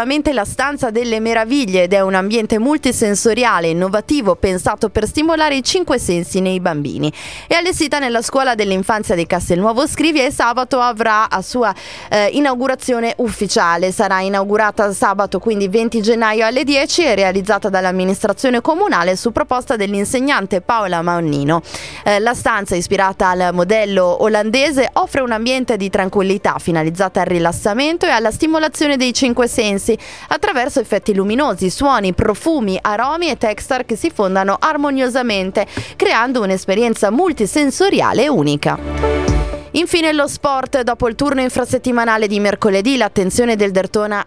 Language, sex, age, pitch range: Italian, female, 20-39, 195-260 Hz